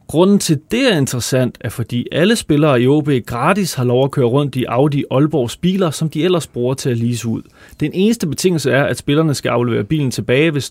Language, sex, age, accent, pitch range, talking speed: Danish, male, 30-49, native, 120-160 Hz, 225 wpm